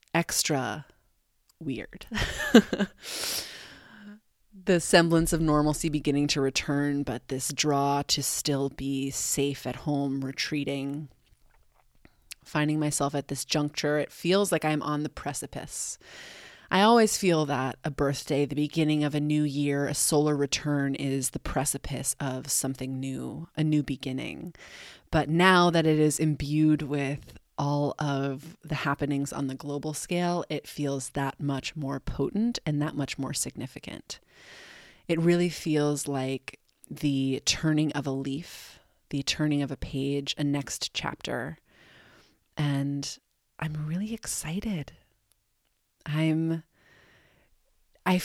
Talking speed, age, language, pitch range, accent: 130 wpm, 30-49, English, 140-160 Hz, American